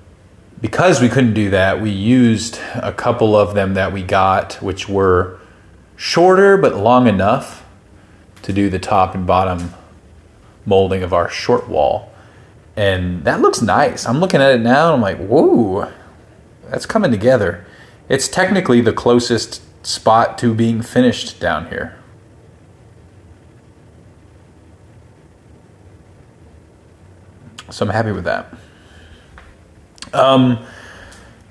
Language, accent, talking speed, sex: English, American, 120 wpm, male